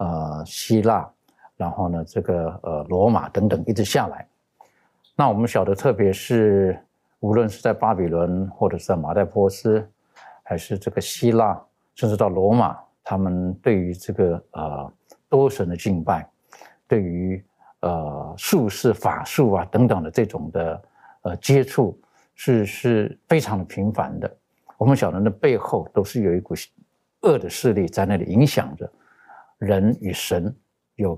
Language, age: Chinese, 50-69